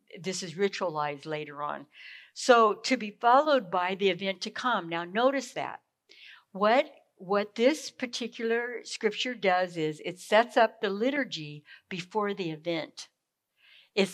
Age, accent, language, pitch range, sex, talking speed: 60-79, American, English, 180-245 Hz, female, 140 wpm